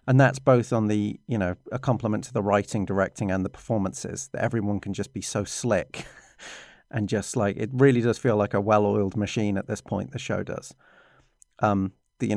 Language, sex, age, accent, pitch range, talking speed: English, male, 40-59, British, 105-130 Hz, 210 wpm